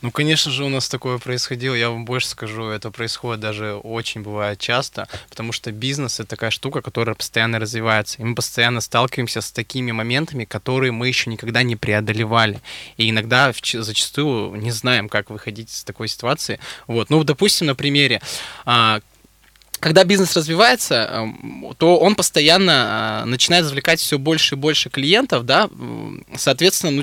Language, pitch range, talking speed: Russian, 115-155 Hz, 155 wpm